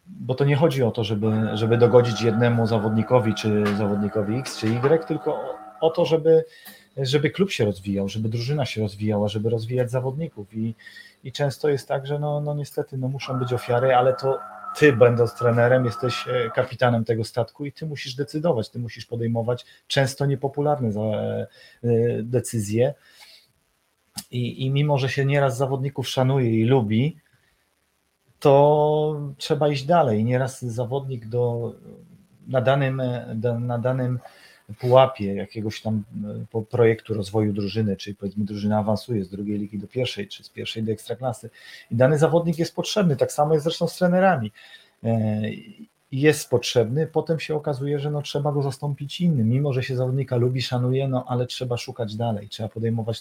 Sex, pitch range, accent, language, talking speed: male, 110-145 Hz, native, Polish, 155 wpm